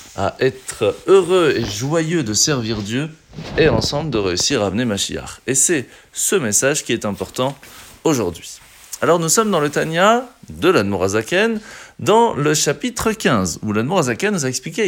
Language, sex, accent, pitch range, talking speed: French, male, French, 120-195 Hz, 160 wpm